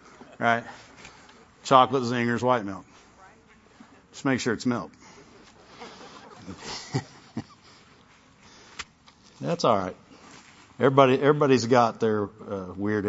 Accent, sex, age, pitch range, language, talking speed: American, male, 50-69, 125-160 Hz, English, 85 wpm